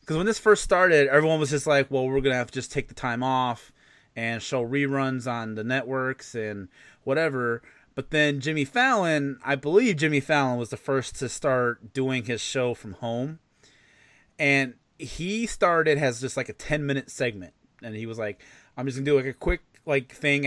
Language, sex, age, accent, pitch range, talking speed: English, male, 30-49, American, 125-170 Hz, 200 wpm